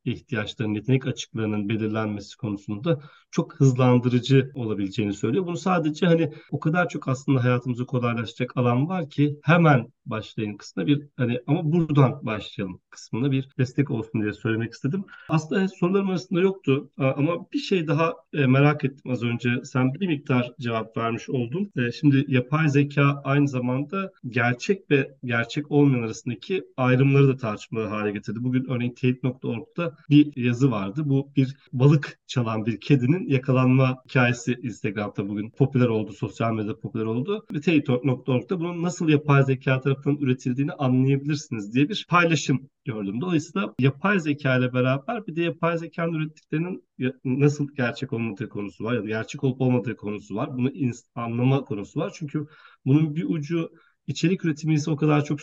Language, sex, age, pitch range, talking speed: Turkish, male, 40-59, 120-150 Hz, 150 wpm